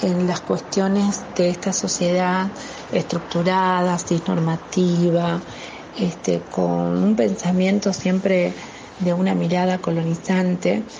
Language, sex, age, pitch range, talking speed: Spanish, female, 40-59, 160-190 Hz, 95 wpm